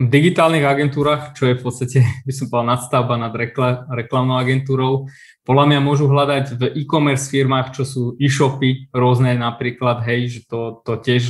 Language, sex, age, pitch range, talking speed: Slovak, male, 20-39, 120-140 Hz, 170 wpm